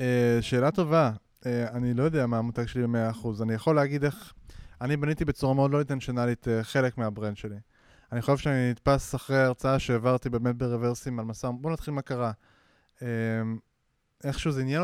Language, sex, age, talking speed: Hebrew, male, 20-39, 170 wpm